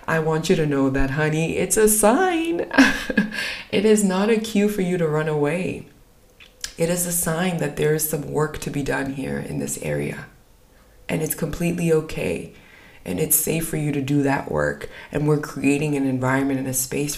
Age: 20-39